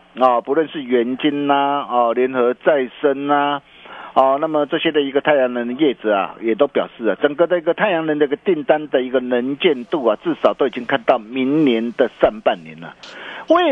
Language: Chinese